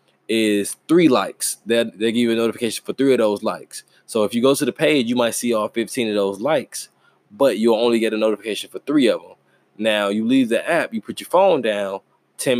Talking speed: 240 wpm